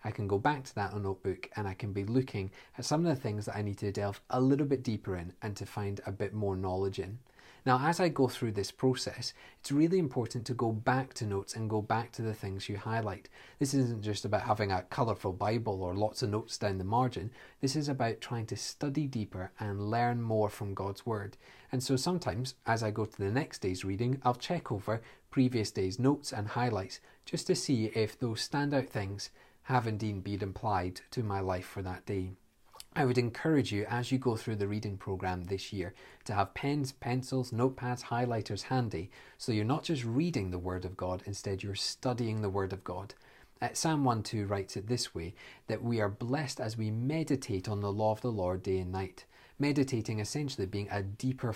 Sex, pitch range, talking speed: male, 100-125 Hz, 215 wpm